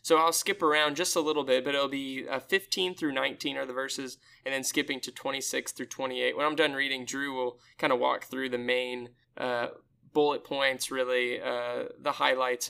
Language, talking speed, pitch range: English, 210 wpm, 125-160 Hz